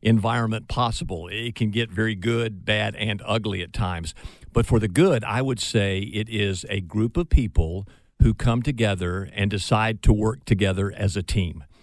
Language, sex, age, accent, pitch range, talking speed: English, male, 50-69, American, 100-120 Hz, 185 wpm